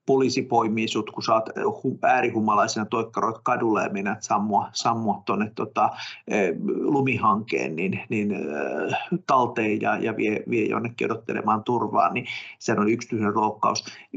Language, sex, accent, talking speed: Finnish, male, native, 125 wpm